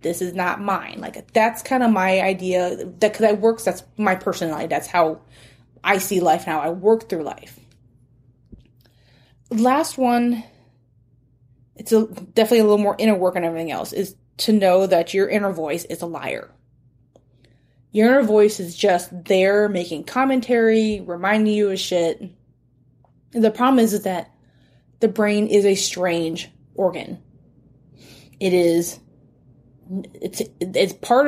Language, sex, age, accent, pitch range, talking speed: English, female, 20-39, American, 140-215 Hz, 150 wpm